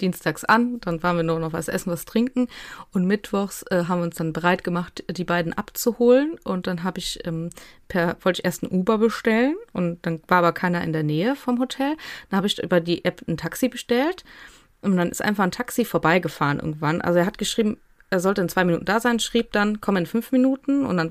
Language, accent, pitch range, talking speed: German, German, 170-230 Hz, 230 wpm